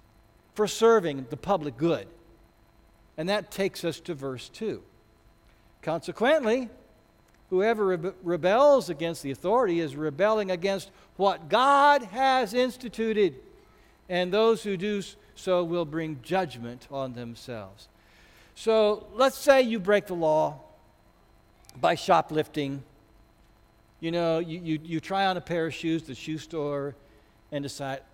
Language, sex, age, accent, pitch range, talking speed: English, male, 60-79, American, 135-215 Hz, 130 wpm